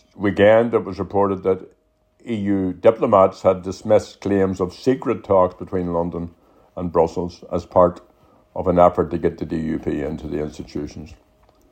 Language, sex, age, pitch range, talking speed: English, male, 60-79, 90-105 Hz, 150 wpm